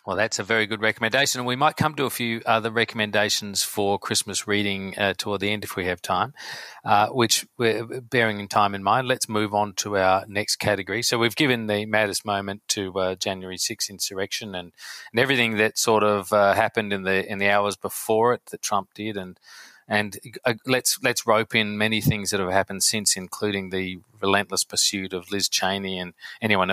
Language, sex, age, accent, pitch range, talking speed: English, male, 40-59, Australian, 95-110 Hz, 205 wpm